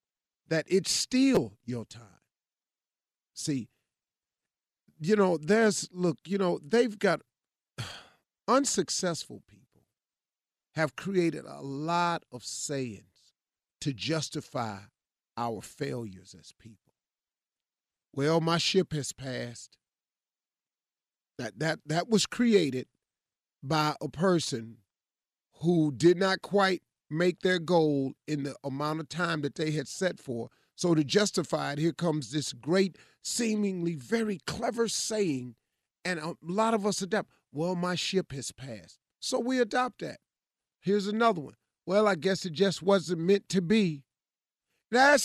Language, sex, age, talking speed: English, male, 40-59, 130 wpm